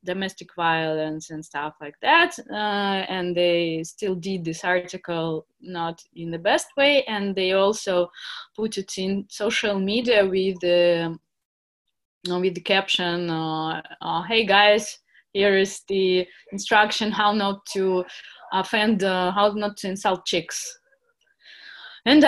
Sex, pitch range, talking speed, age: female, 180-230 Hz, 140 wpm, 20-39